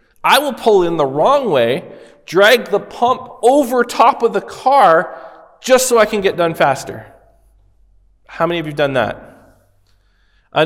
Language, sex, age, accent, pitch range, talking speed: English, male, 40-59, American, 135-185 Hz, 170 wpm